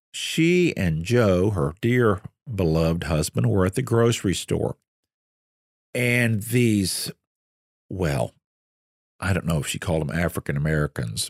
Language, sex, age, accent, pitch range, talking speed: English, male, 50-69, American, 90-125 Hz, 125 wpm